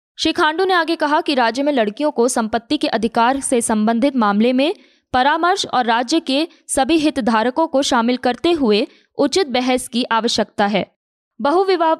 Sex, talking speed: female, 165 wpm